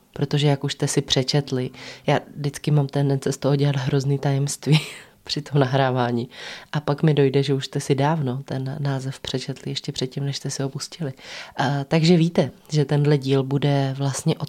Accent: native